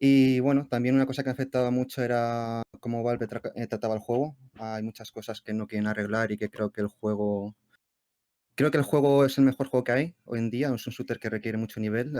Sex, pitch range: male, 110-130 Hz